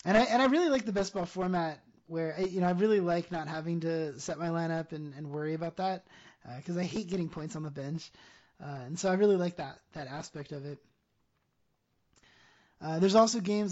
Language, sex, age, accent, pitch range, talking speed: English, male, 20-39, American, 160-190 Hz, 225 wpm